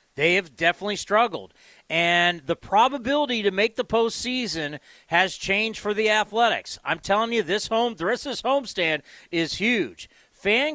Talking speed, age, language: 160 wpm, 40-59, English